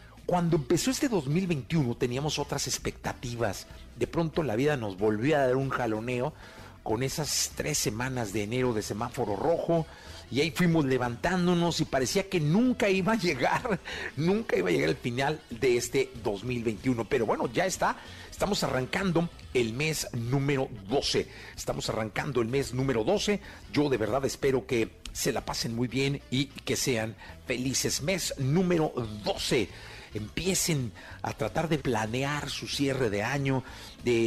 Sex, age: male, 50-69